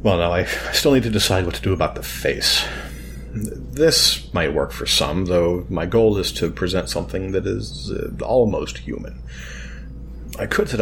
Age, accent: 40-59, American